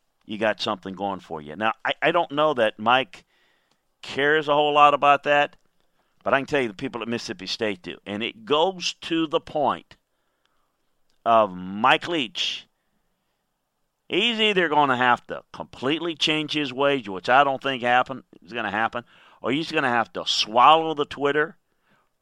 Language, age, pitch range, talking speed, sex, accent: English, 50-69, 110-150 Hz, 180 wpm, male, American